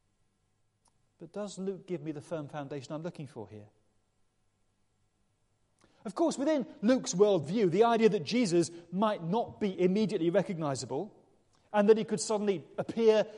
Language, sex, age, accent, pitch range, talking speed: English, male, 40-59, British, 140-220 Hz, 145 wpm